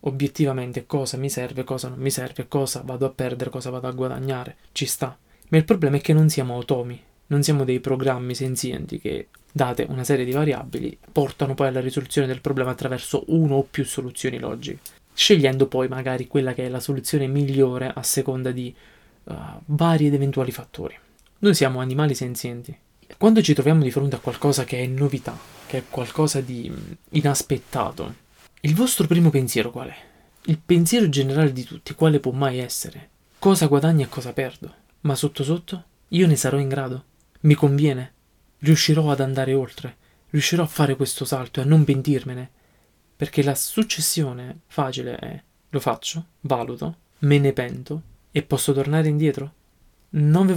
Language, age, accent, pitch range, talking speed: Italian, 20-39, native, 130-150 Hz, 170 wpm